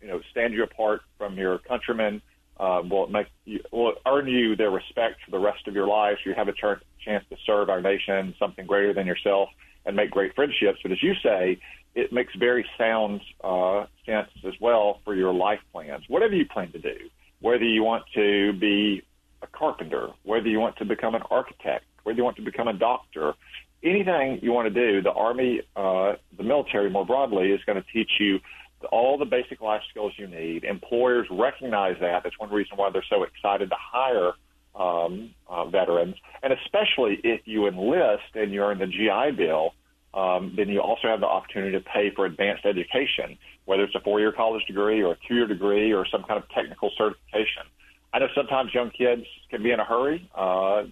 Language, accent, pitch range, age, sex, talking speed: English, American, 95-115 Hz, 40-59, male, 205 wpm